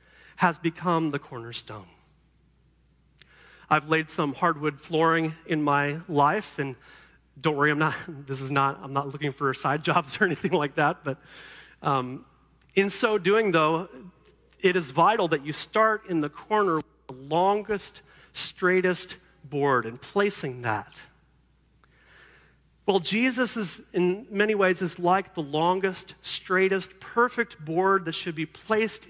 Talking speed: 150 wpm